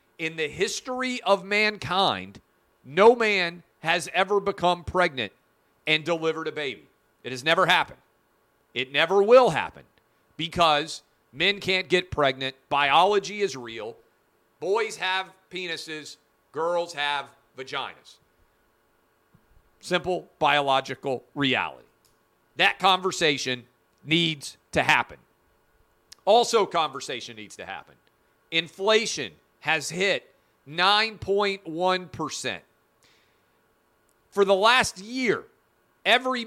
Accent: American